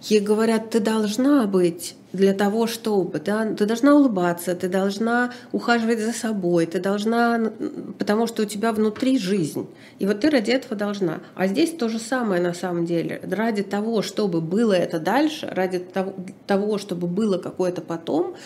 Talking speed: 165 wpm